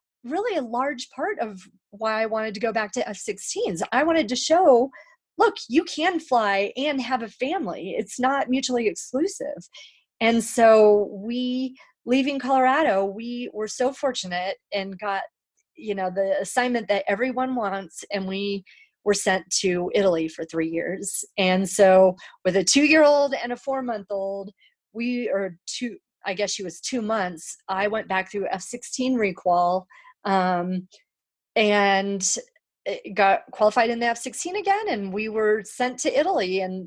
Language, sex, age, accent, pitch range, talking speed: English, female, 30-49, American, 195-255 Hz, 155 wpm